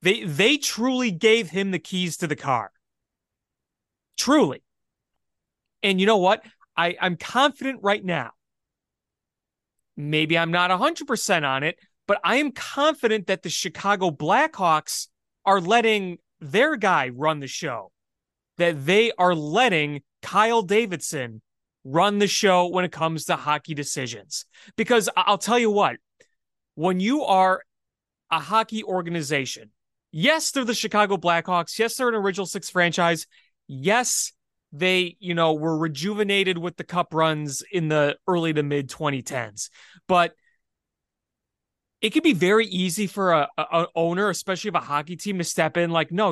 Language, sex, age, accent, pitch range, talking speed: English, male, 30-49, American, 155-210 Hz, 145 wpm